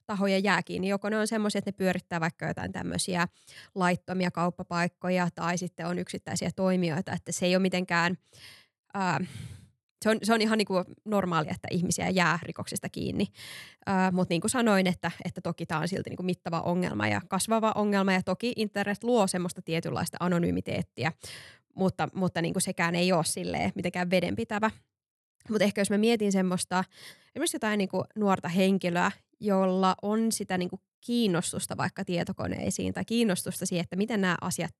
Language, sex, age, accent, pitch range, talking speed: Finnish, female, 20-39, native, 175-200 Hz, 165 wpm